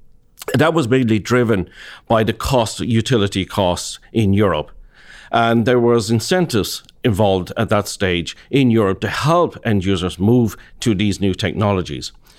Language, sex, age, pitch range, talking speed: English, male, 50-69, 100-130 Hz, 150 wpm